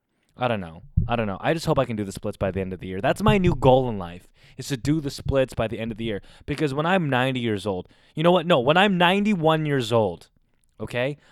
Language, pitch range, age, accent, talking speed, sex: English, 115-150 Hz, 20-39, American, 280 wpm, male